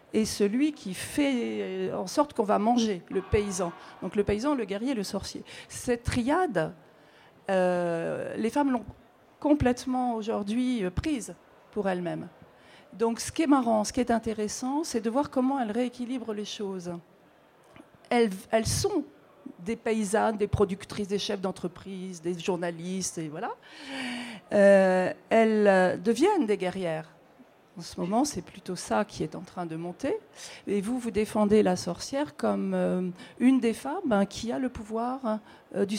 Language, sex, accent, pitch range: French, female, French, 190-245 Hz